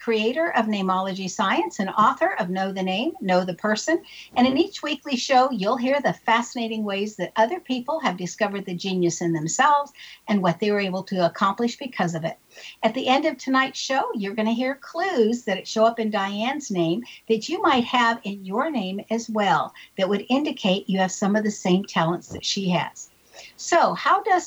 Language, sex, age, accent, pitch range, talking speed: English, female, 60-79, American, 190-255 Hz, 205 wpm